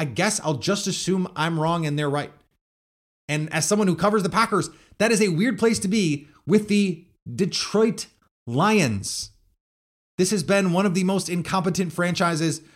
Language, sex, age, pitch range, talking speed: English, male, 30-49, 130-180 Hz, 175 wpm